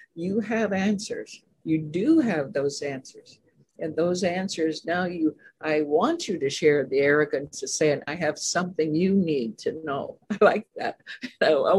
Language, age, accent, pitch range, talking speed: English, 60-79, American, 160-215 Hz, 170 wpm